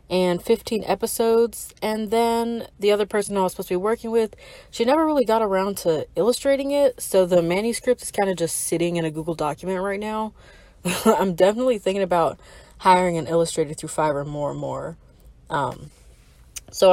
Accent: American